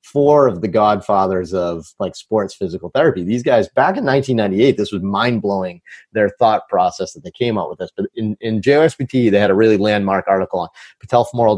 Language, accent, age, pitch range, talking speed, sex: English, American, 30-49, 100-125 Hz, 200 wpm, male